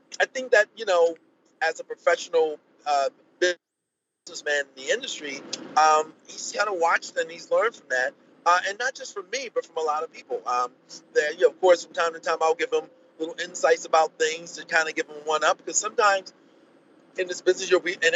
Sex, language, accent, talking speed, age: male, English, American, 220 wpm, 40-59